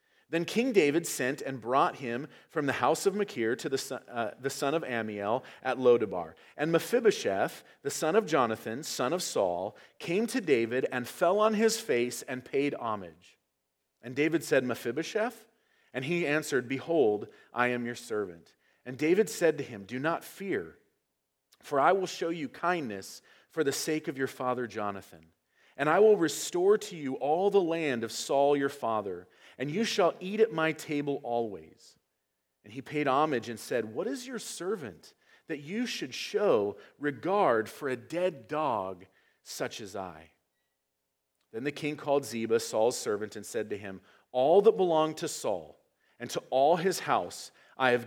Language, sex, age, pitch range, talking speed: English, male, 40-59, 115-170 Hz, 170 wpm